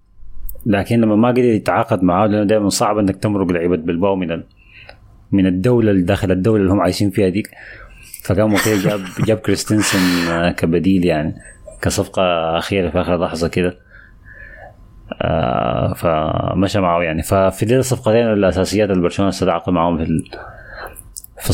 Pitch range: 95-115 Hz